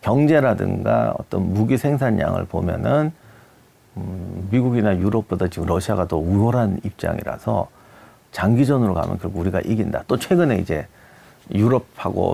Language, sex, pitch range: Korean, male, 100-135 Hz